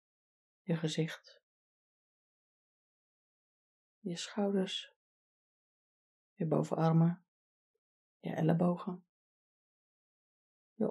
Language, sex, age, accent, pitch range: Dutch, female, 30-49, Dutch, 165-190 Hz